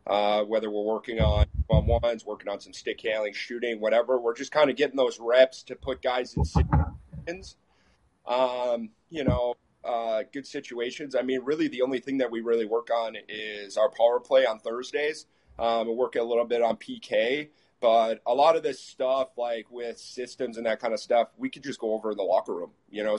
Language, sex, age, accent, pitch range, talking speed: English, male, 30-49, American, 105-125 Hz, 210 wpm